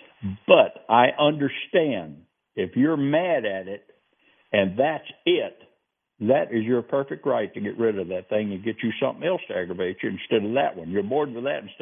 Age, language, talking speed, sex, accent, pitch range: 60-79, English, 195 wpm, male, American, 110-140 Hz